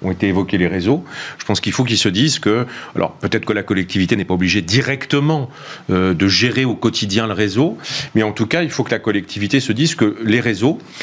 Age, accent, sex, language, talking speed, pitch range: 40-59, French, male, French, 230 wpm, 105-145 Hz